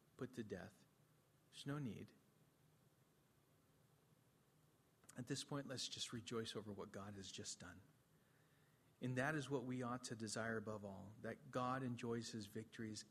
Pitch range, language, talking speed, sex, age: 120-150 Hz, English, 150 wpm, male, 40-59